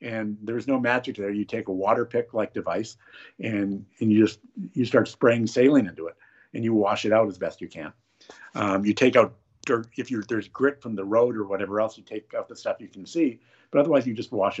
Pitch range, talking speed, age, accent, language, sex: 110-140 Hz, 245 wpm, 50-69, American, English, male